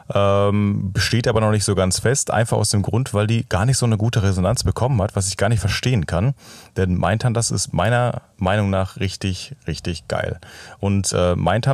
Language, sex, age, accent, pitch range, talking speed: German, male, 30-49, German, 100-120 Hz, 200 wpm